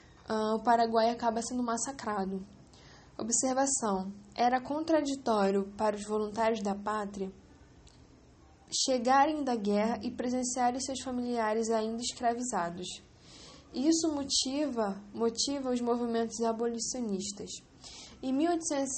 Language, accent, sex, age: English, Brazilian, female, 10-29